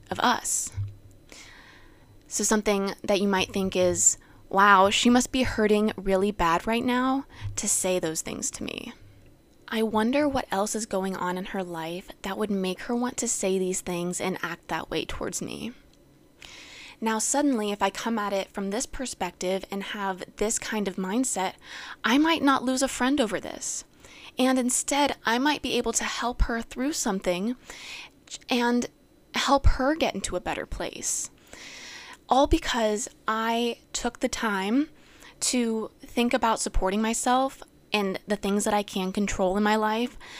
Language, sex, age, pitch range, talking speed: English, female, 20-39, 190-250 Hz, 170 wpm